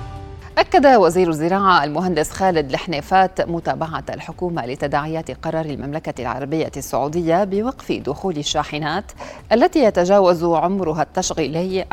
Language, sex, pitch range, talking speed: Arabic, female, 145-175 Hz, 100 wpm